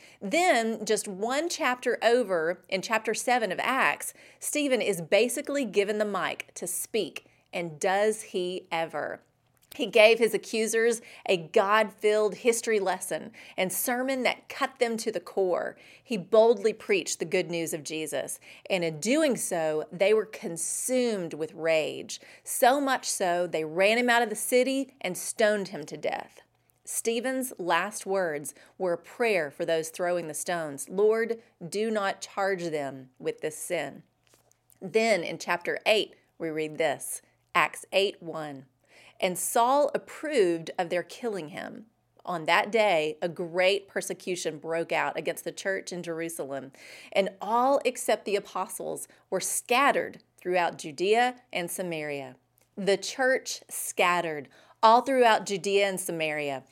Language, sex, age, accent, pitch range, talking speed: English, female, 30-49, American, 170-230 Hz, 145 wpm